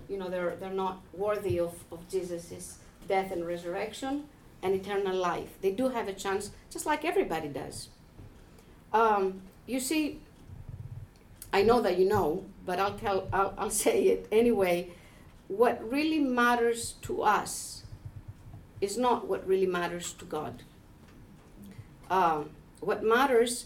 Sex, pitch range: female, 190-250 Hz